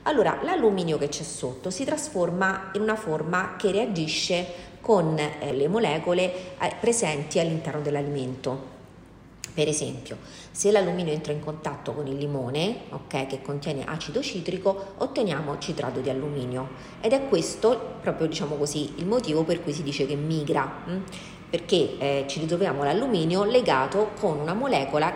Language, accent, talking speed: Italian, native, 150 wpm